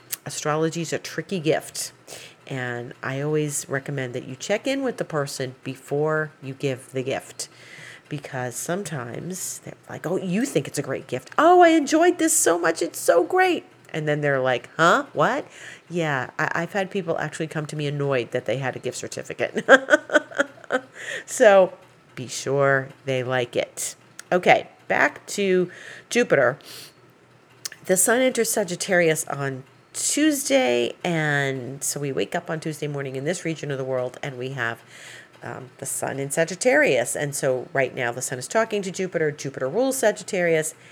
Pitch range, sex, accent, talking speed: 135-180 Hz, female, American, 165 wpm